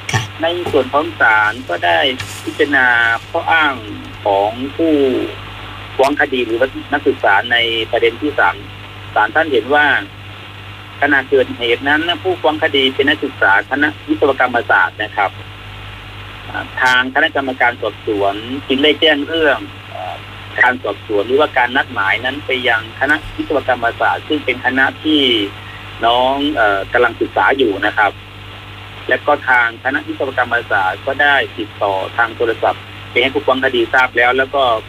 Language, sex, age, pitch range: Thai, male, 30-49, 105-140 Hz